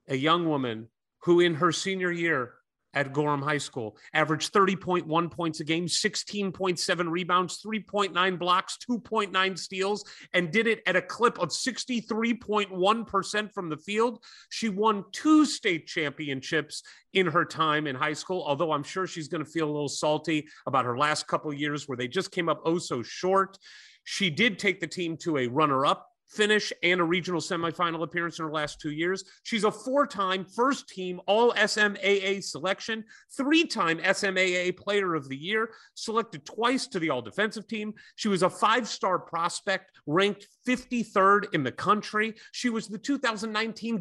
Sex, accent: male, American